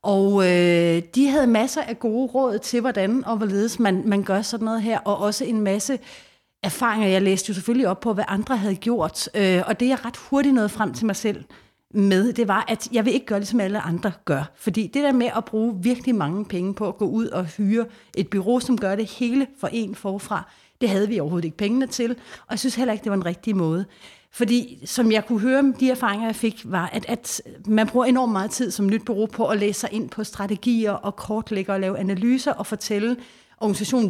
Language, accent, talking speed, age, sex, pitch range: Danish, native, 235 wpm, 30-49, female, 195-235 Hz